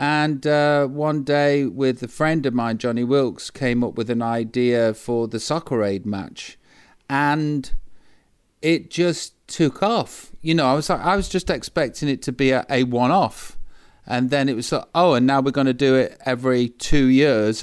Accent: British